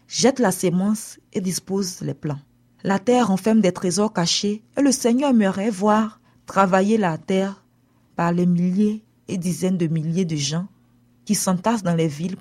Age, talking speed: 40-59, 170 wpm